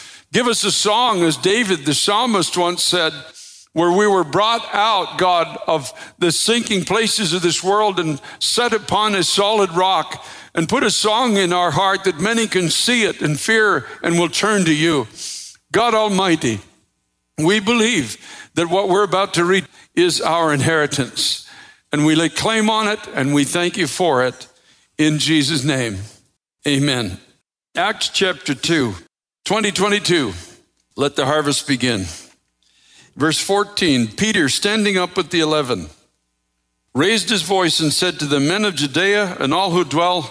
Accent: American